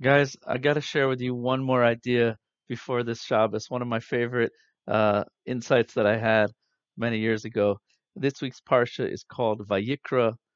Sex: male